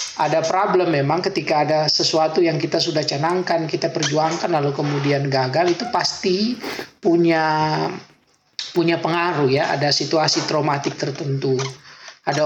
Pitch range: 155-180 Hz